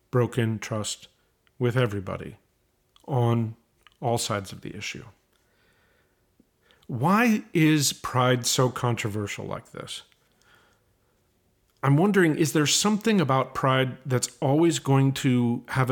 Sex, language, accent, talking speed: male, English, American, 110 wpm